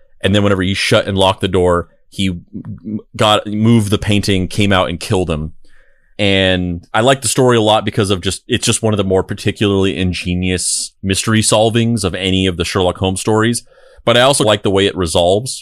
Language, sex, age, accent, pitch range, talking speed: English, male, 30-49, American, 95-110 Hz, 210 wpm